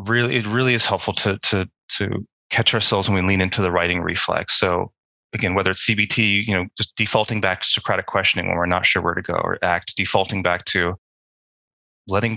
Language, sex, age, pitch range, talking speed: English, male, 30-49, 90-110 Hz, 210 wpm